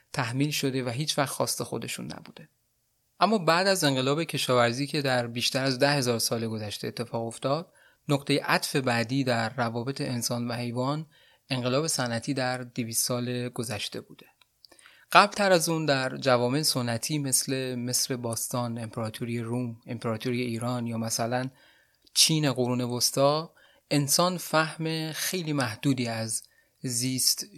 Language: Persian